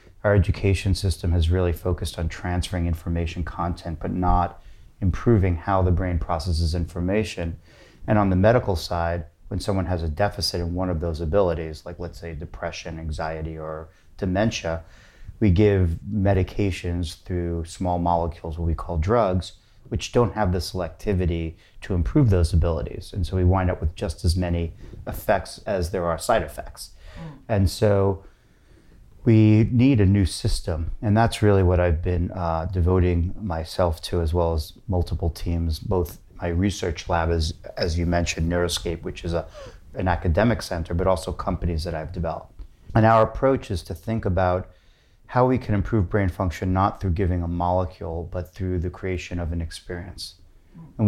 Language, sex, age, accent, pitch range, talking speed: English, male, 30-49, American, 85-100 Hz, 165 wpm